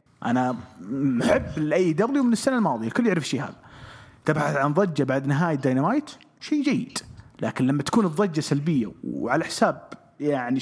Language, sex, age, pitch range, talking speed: English, male, 30-49, 145-230 Hz, 155 wpm